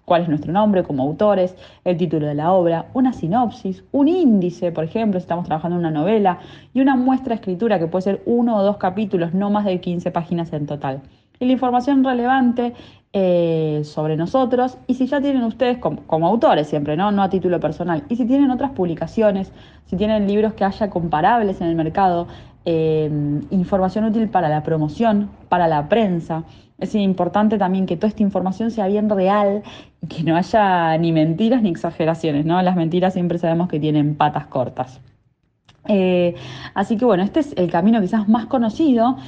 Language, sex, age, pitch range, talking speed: Spanish, female, 20-39, 165-220 Hz, 190 wpm